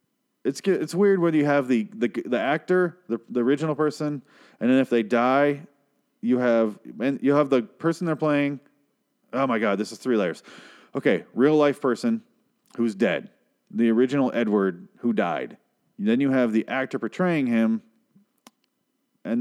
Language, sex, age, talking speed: English, male, 30-49, 165 wpm